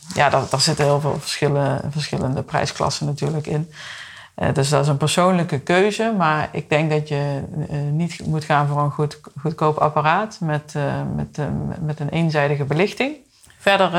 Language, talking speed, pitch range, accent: Dutch, 175 wpm, 145-175 Hz, Dutch